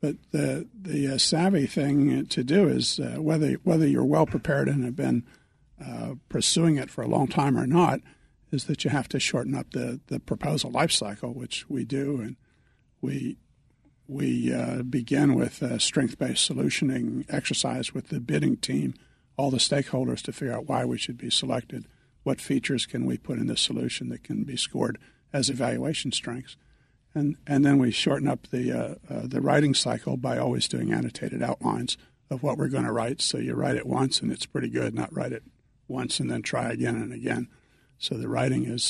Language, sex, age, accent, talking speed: English, male, 60-79, American, 195 wpm